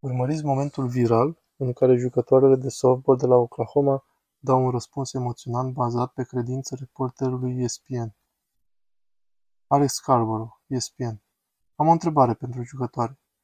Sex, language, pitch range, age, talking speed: male, Romanian, 125-140 Hz, 20-39, 125 wpm